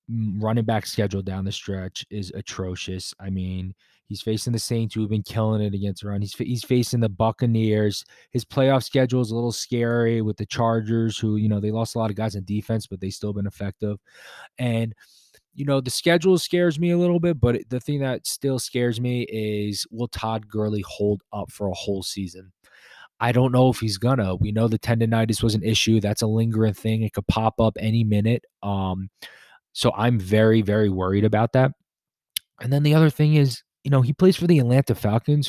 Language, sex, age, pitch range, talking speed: English, male, 20-39, 105-130 Hz, 210 wpm